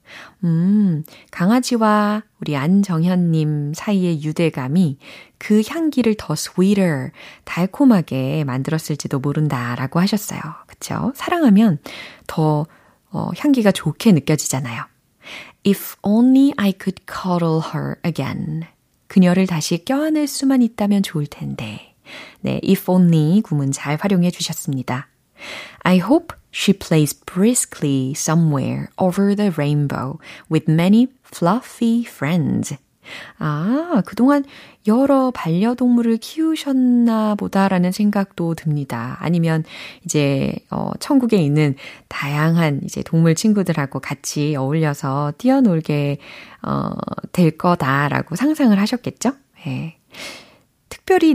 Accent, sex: native, female